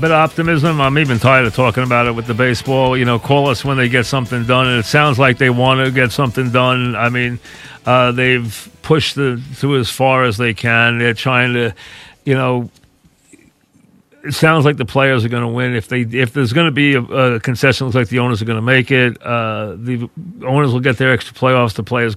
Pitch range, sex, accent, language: 120-135 Hz, male, American, English